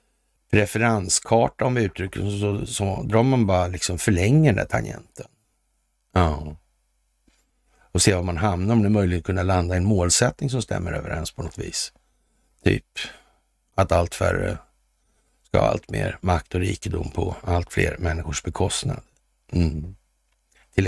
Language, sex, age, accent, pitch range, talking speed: Swedish, male, 60-79, native, 90-130 Hz, 155 wpm